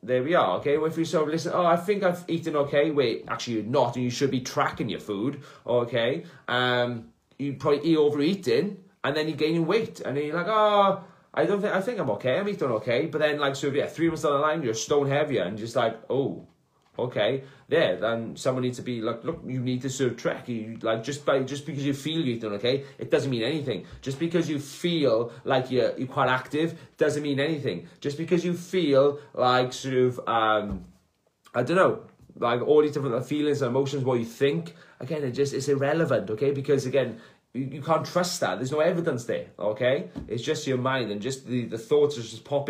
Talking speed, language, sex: 230 wpm, English, male